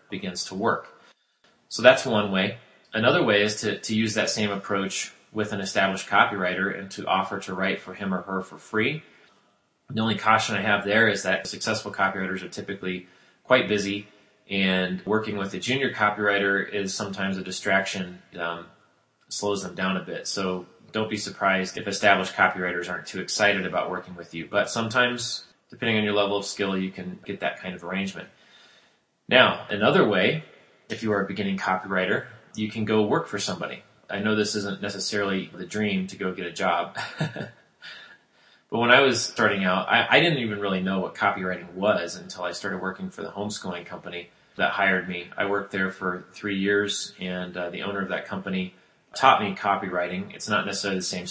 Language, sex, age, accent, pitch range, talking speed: English, male, 30-49, American, 95-105 Hz, 190 wpm